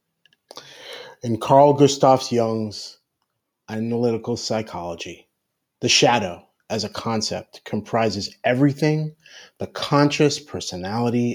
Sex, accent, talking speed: male, American, 85 wpm